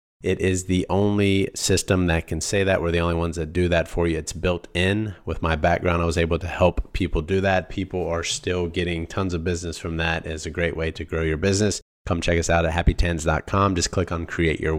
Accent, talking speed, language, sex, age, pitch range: American, 245 wpm, English, male, 30-49, 85-95 Hz